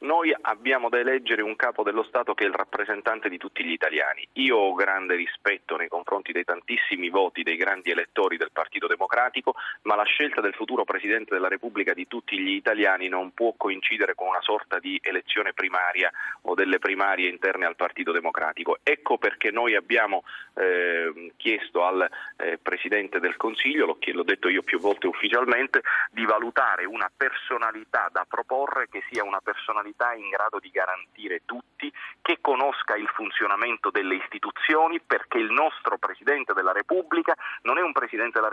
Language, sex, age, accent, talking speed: Italian, male, 30-49, native, 170 wpm